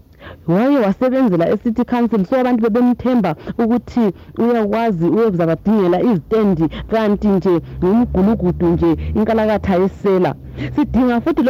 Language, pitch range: English, 190-245 Hz